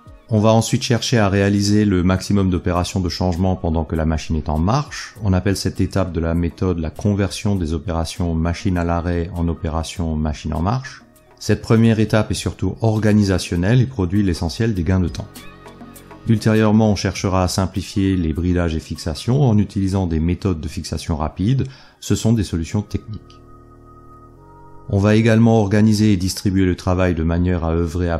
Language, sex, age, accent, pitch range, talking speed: French, male, 30-49, French, 85-110 Hz, 180 wpm